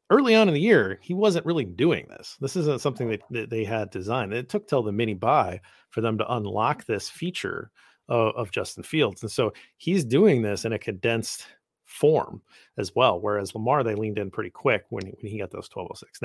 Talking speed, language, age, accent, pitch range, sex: 215 wpm, English, 40-59, American, 110-145 Hz, male